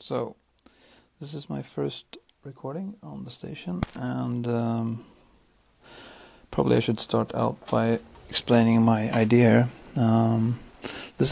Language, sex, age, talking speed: English, male, 30-49, 115 wpm